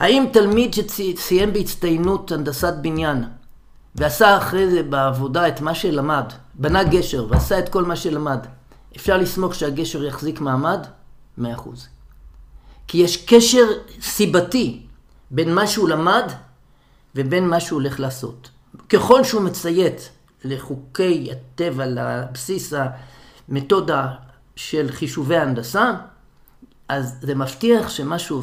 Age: 50-69